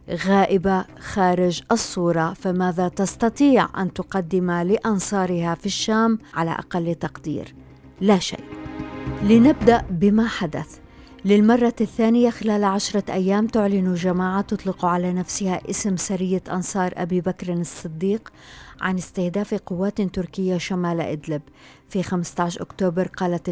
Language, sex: Arabic, female